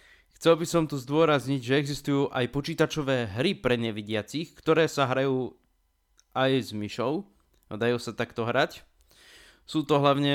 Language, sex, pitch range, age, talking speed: Slovak, male, 120-150 Hz, 20-39, 150 wpm